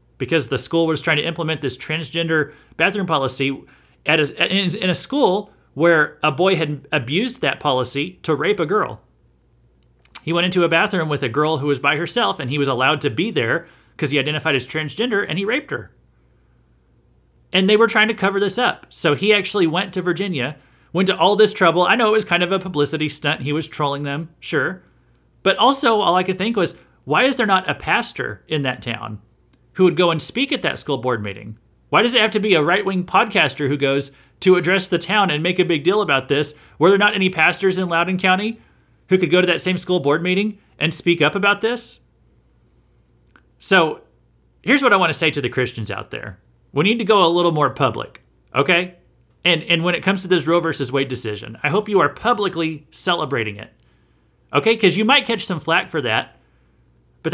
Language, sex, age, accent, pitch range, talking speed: English, male, 30-49, American, 140-190 Hz, 220 wpm